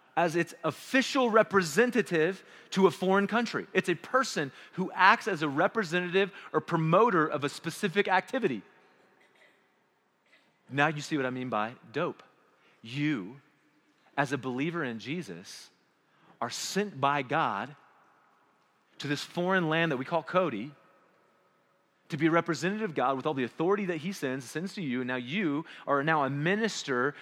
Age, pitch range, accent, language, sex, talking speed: 30-49, 140-200 Hz, American, English, male, 155 wpm